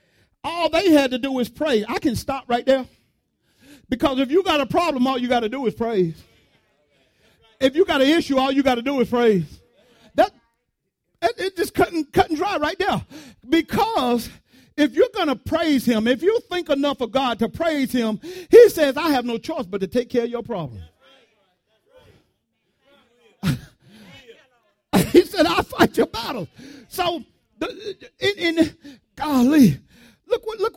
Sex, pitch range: male, 245-355 Hz